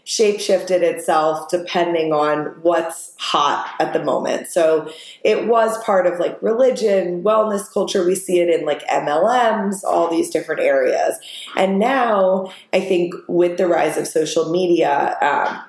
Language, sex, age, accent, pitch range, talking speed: English, female, 20-39, American, 170-215 Hz, 155 wpm